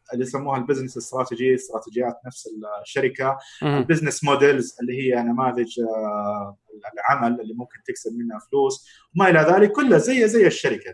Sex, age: male, 30-49